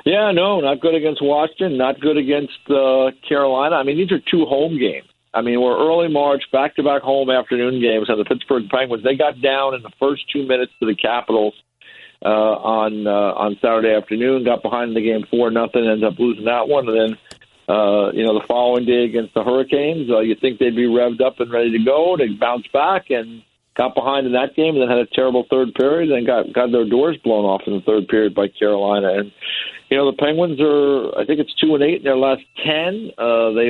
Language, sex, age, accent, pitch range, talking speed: English, male, 50-69, American, 115-140 Hz, 230 wpm